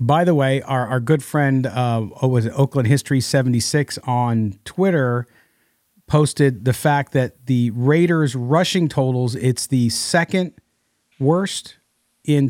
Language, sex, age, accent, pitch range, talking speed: English, male, 40-59, American, 125-155 Hz, 140 wpm